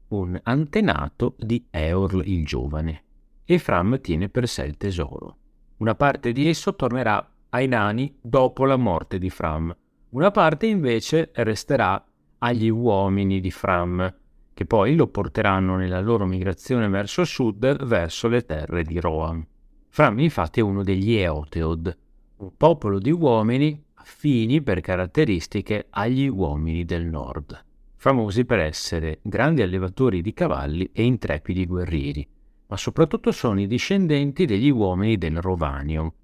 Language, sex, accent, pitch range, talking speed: Italian, male, native, 80-125 Hz, 135 wpm